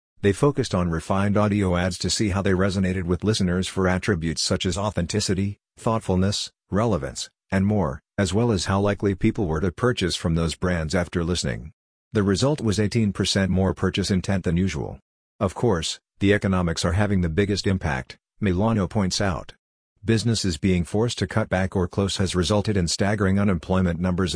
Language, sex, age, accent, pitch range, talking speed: English, male, 50-69, American, 90-105 Hz, 175 wpm